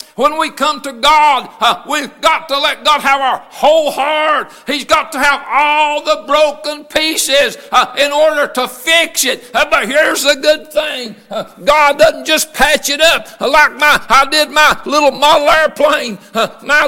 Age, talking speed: 60-79, 185 wpm